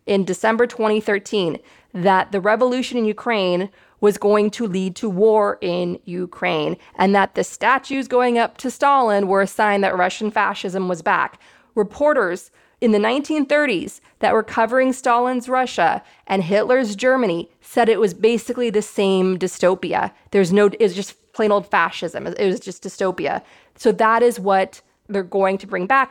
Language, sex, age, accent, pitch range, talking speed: English, female, 30-49, American, 190-235 Hz, 165 wpm